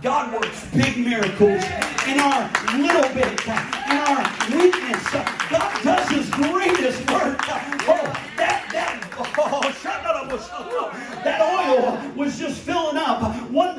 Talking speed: 120 wpm